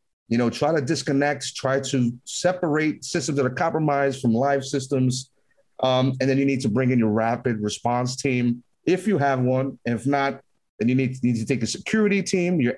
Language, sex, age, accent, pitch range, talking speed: English, male, 30-49, American, 115-150 Hz, 205 wpm